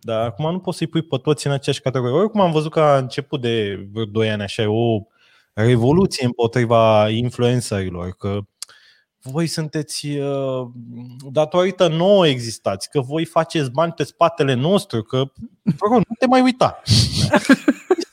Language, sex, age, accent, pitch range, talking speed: Romanian, male, 20-39, native, 130-210 Hz, 155 wpm